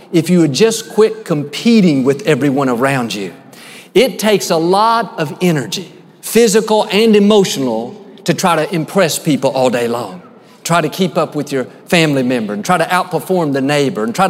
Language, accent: English, American